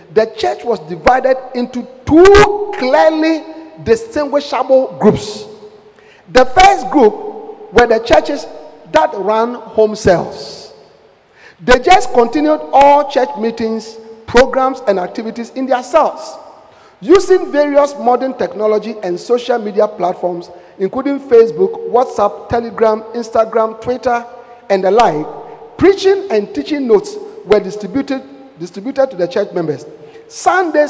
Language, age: English, 50-69